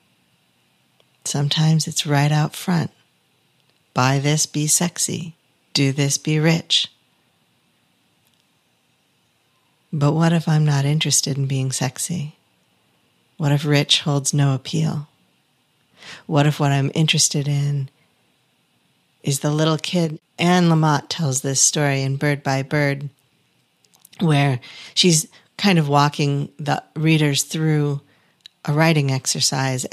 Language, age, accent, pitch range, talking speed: English, 50-69, American, 140-160 Hz, 115 wpm